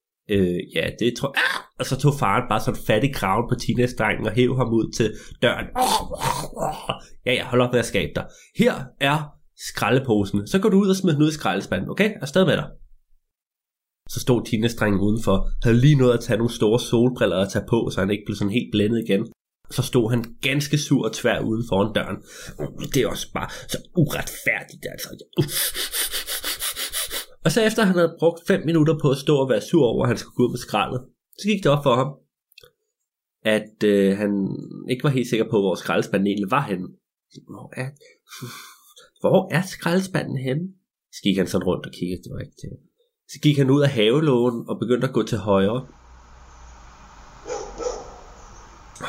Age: 20-39